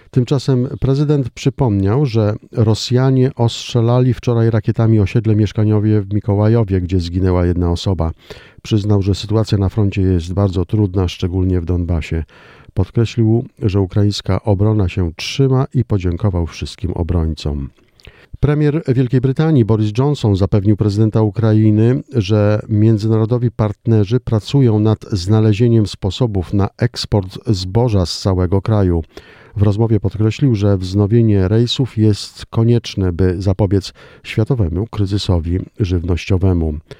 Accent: native